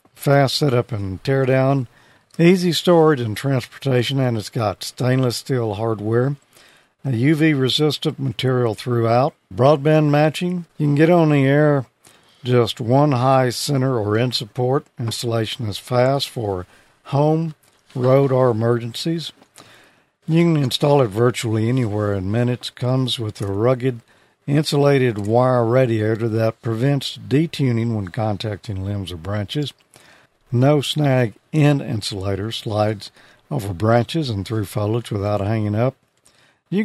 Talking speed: 130 wpm